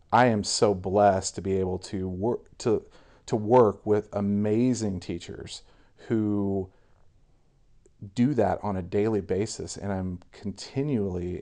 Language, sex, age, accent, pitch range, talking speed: English, male, 40-59, American, 95-110 Hz, 130 wpm